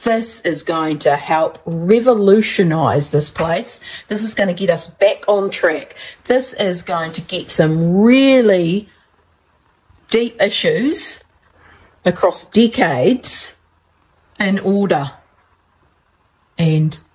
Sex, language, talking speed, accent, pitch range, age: female, English, 110 wpm, Australian, 155-205 Hz, 40-59